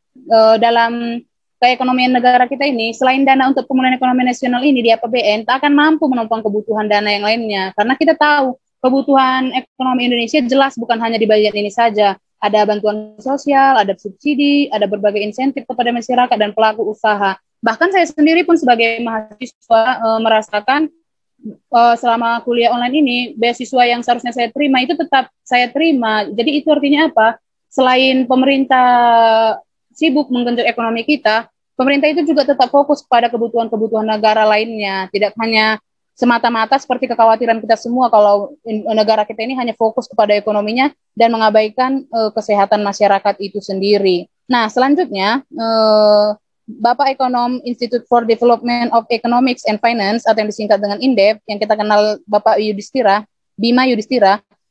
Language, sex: Indonesian, female